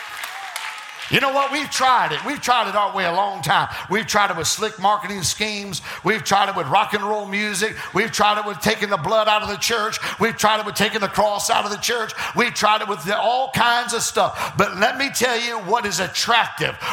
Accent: American